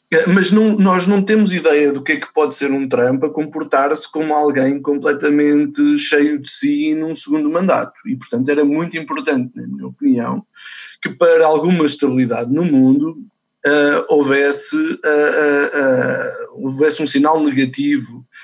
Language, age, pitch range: Portuguese, 20-39, 135-225 Hz